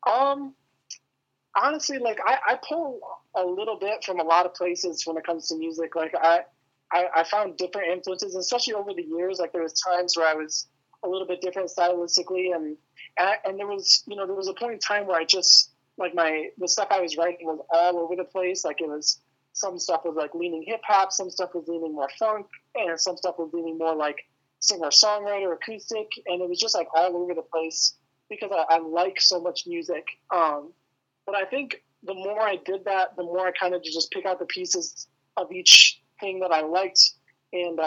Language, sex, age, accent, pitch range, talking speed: English, male, 20-39, American, 160-195 Hz, 215 wpm